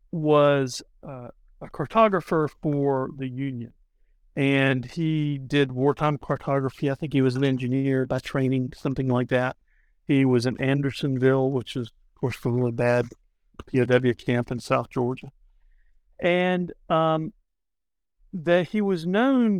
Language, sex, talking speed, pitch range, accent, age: English, male, 140 wpm, 125-150 Hz, American, 50-69